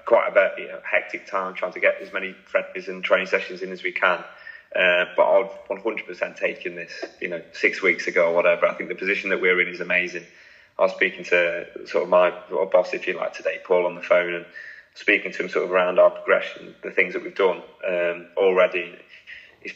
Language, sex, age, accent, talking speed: English, male, 20-39, British, 235 wpm